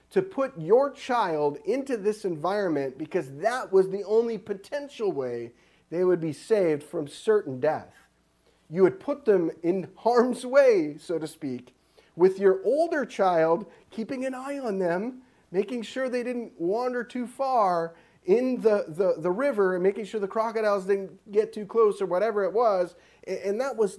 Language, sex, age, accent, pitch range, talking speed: English, male, 40-59, American, 155-215 Hz, 170 wpm